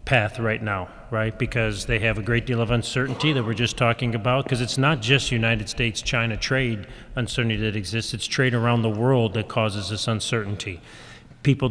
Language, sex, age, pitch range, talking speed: English, male, 40-59, 115-140 Hz, 195 wpm